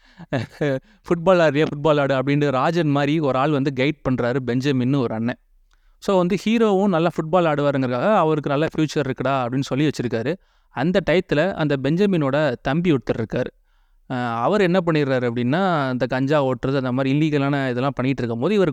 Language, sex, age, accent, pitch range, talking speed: Tamil, male, 30-49, native, 130-160 Hz, 155 wpm